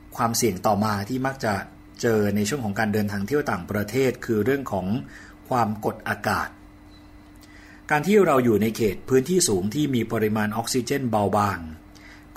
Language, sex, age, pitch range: Thai, male, 60-79, 100-125 Hz